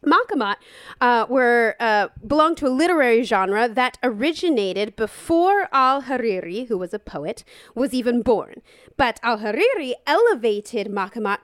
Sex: female